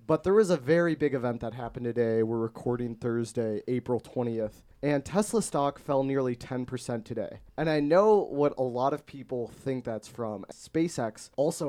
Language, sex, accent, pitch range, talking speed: English, male, American, 115-140 Hz, 180 wpm